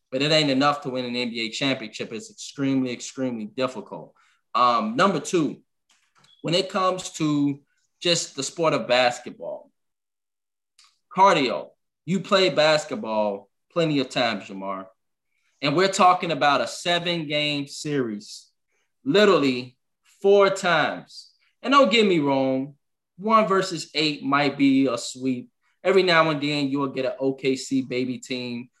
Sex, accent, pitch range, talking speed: male, American, 125-155 Hz, 135 wpm